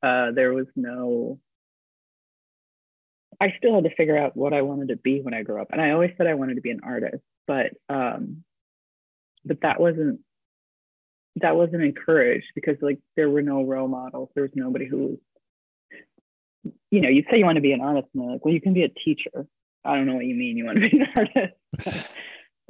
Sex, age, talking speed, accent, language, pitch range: female, 30-49, 210 wpm, American, English, 140-195 Hz